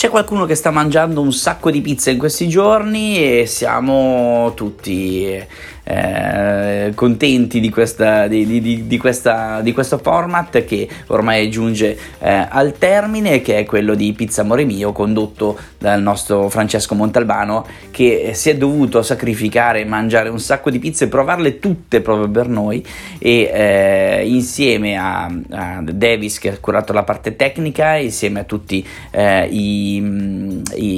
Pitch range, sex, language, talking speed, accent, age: 105-135 Hz, male, Italian, 155 wpm, native, 20-39